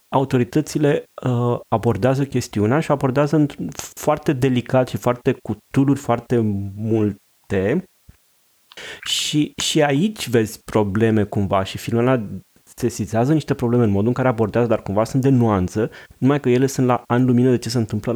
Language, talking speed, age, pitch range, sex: Romanian, 150 wpm, 30-49, 100-125 Hz, male